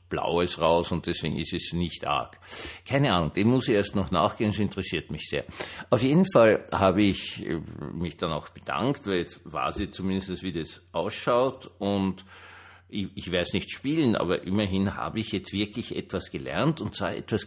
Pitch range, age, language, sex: 90-115 Hz, 60-79, German, male